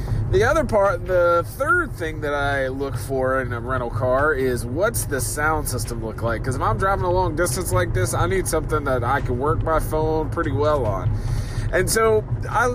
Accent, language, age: American, English, 20-39